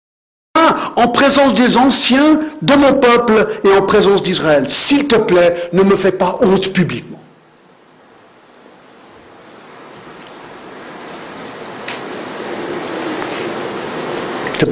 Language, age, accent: French, 60-79, French